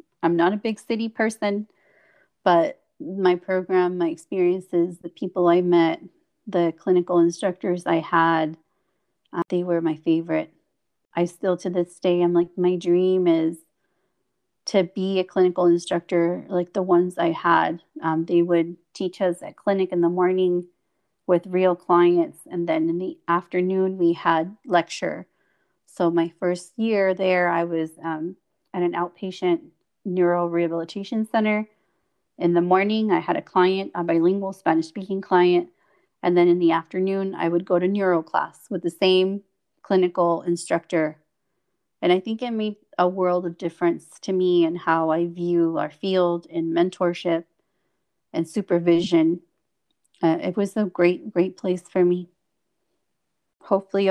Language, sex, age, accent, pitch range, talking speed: English, female, 30-49, American, 170-190 Hz, 155 wpm